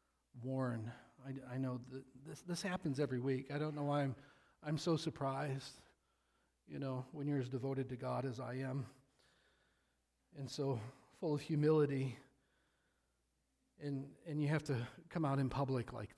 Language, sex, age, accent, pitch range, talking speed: English, male, 40-59, American, 130-155 Hz, 165 wpm